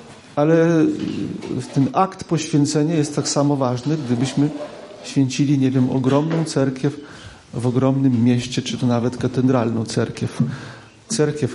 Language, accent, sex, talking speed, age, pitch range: Polish, native, male, 120 wpm, 40-59, 125-145 Hz